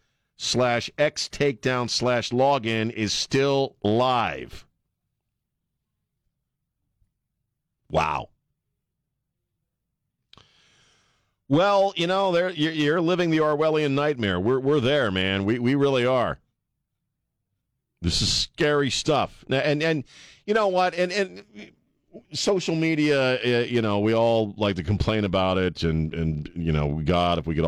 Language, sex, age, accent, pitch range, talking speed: English, male, 50-69, American, 95-130 Hz, 125 wpm